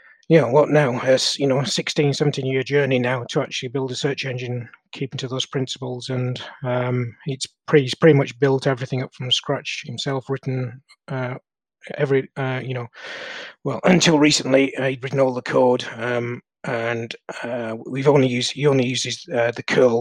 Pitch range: 125-145 Hz